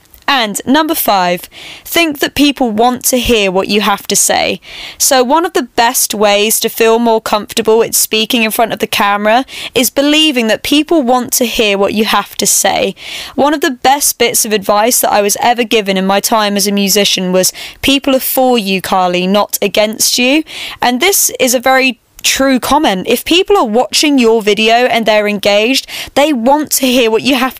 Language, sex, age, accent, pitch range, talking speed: English, female, 10-29, British, 215-270 Hz, 200 wpm